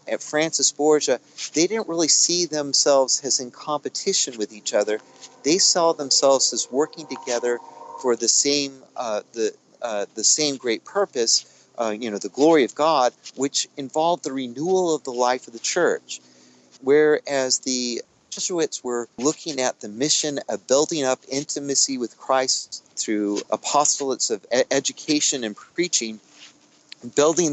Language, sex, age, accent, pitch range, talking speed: English, male, 40-59, American, 120-155 Hz, 150 wpm